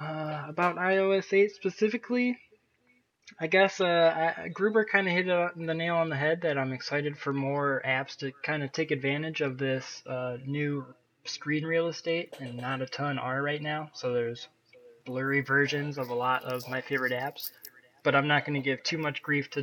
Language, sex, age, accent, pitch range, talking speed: English, male, 20-39, American, 130-155 Hz, 195 wpm